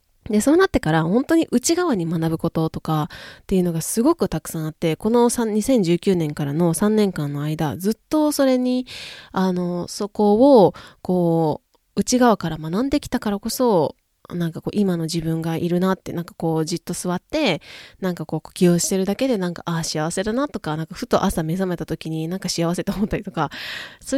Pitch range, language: 165-235 Hz, Japanese